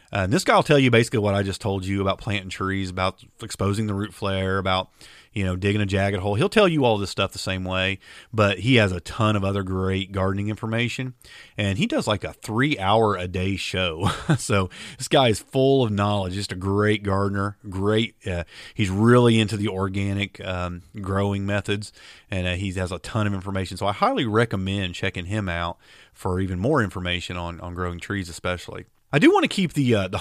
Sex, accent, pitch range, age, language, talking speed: male, American, 95-120 Hz, 40-59, English, 220 wpm